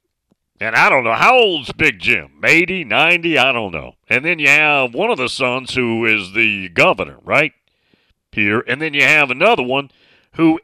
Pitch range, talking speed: 105-150 Hz, 190 wpm